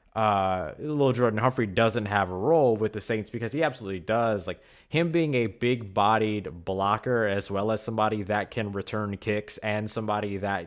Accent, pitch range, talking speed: American, 95-115 Hz, 185 wpm